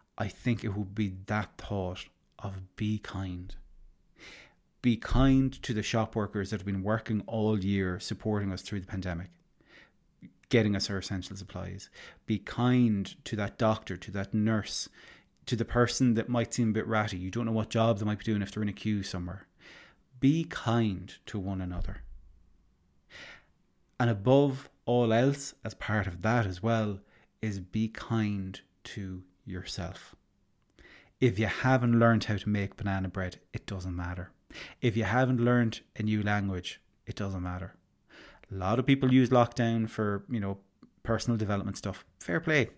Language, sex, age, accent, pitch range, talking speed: English, male, 30-49, Irish, 95-120 Hz, 170 wpm